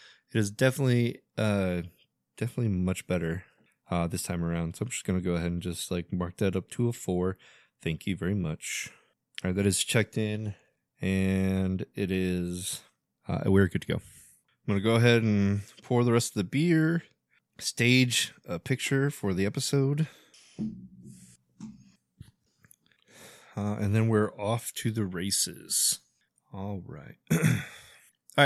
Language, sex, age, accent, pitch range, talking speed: English, male, 20-39, American, 95-120 Hz, 155 wpm